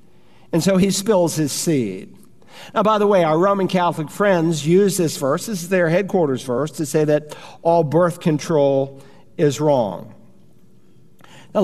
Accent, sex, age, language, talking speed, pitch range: American, male, 50-69, English, 160 wpm, 145-175 Hz